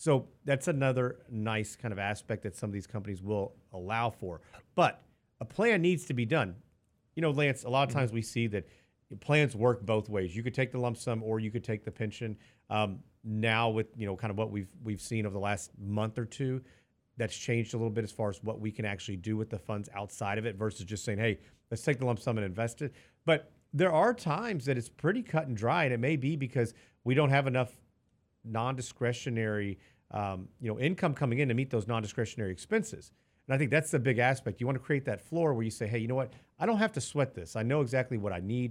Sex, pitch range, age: male, 105-130 Hz, 40-59